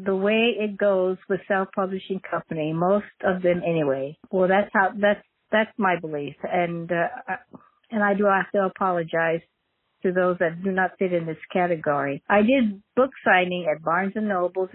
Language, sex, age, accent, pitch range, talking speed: English, female, 60-79, American, 165-205 Hz, 185 wpm